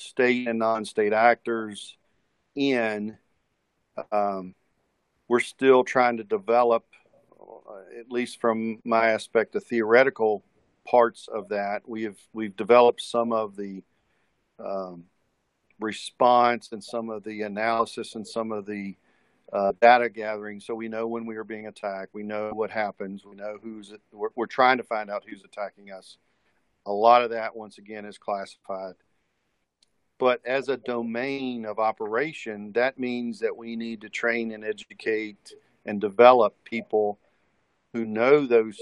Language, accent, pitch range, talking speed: English, American, 105-115 Hz, 145 wpm